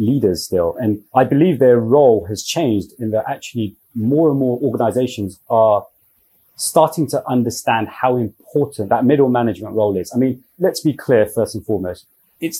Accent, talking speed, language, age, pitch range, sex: British, 170 wpm, English, 30-49, 105-135 Hz, male